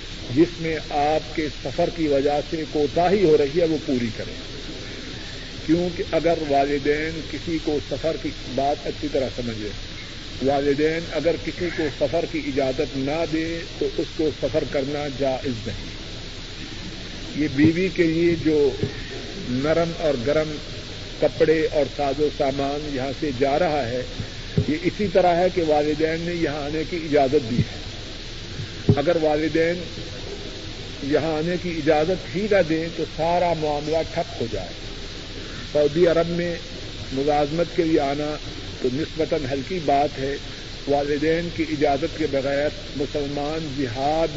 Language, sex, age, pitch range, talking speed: Urdu, male, 50-69, 130-160 Hz, 145 wpm